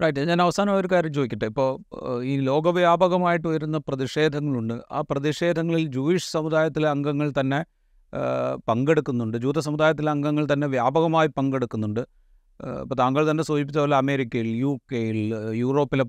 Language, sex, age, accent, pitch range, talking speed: Malayalam, male, 30-49, native, 135-170 Hz, 120 wpm